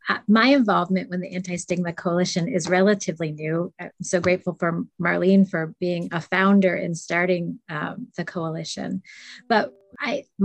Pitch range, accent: 170-200 Hz, American